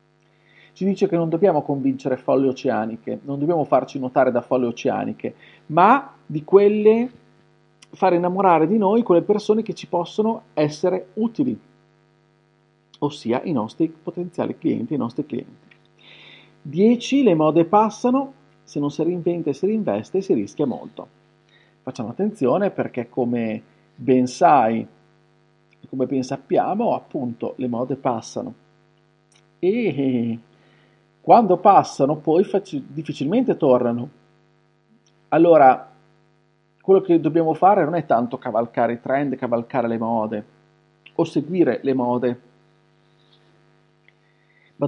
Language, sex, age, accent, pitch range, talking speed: Italian, male, 40-59, native, 135-185 Hz, 120 wpm